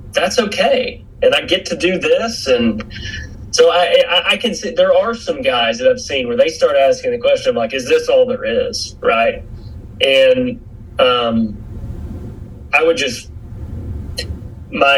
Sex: male